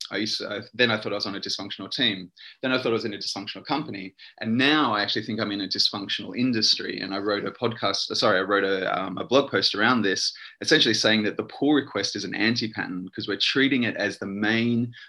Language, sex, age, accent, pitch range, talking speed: English, male, 20-39, Australian, 95-110 Hz, 230 wpm